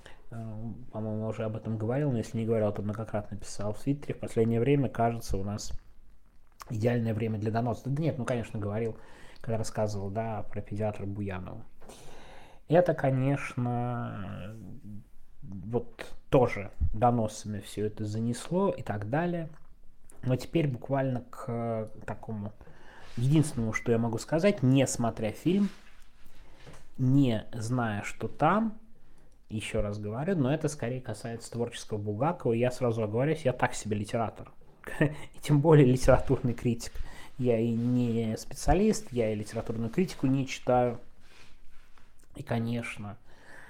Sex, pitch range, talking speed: male, 110-130 Hz, 130 wpm